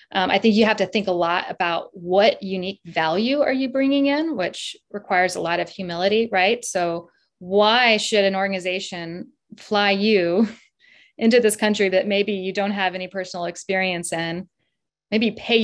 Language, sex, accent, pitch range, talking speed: English, female, American, 190-230 Hz, 175 wpm